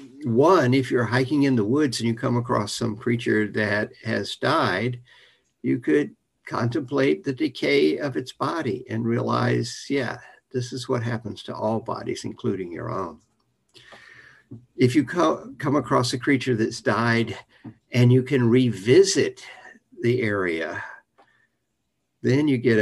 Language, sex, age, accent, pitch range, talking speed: English, male, 60-79, American, 110-135 Hz, 140 wpm